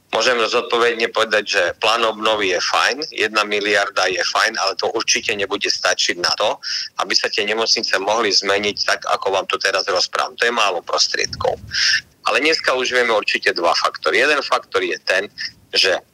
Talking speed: 175 wpm